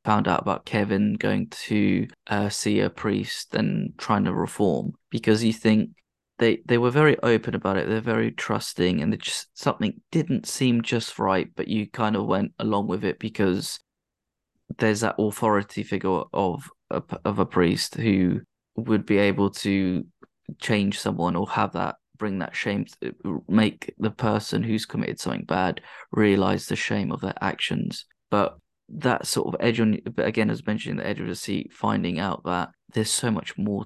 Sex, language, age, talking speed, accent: male, English, 20-39, 185 wpm, British